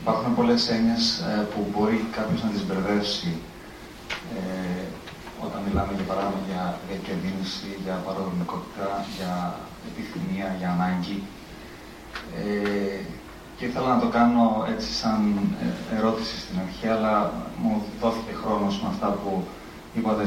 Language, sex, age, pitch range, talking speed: Greek, male, 30-49, 100-120 Hz, 120 wpm